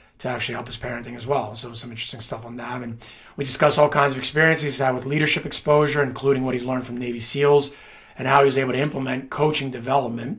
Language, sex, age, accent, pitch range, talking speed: English, male, 30-49, American, 130-145 Hz, 235 wpm